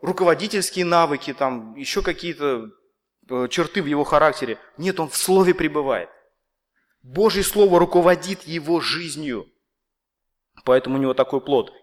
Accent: native